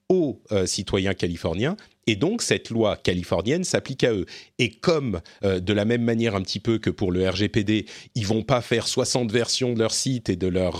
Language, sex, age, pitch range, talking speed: French, male, 40-59, 95-120 Hz, 215 wpm